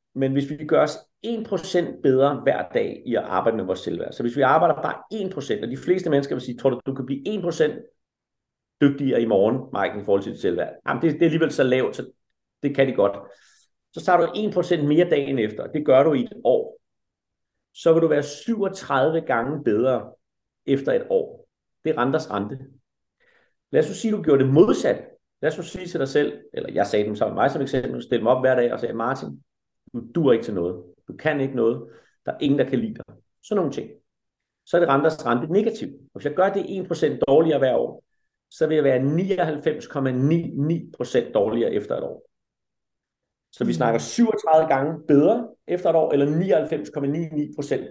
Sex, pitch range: male, 135-180 Hz